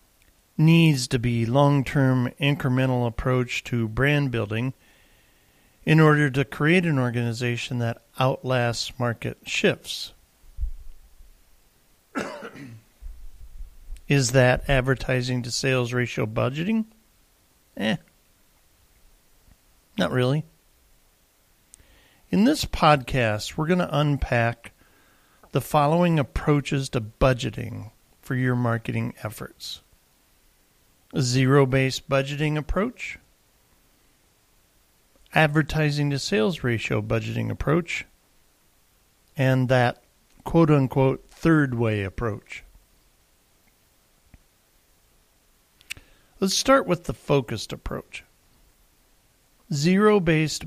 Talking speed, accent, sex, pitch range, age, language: 75 wpm, American, male, 115-145 Hz, 50-69, English